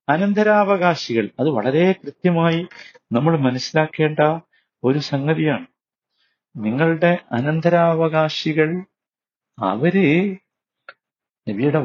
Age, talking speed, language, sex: 50-69, 60 wpm, Malayalam, male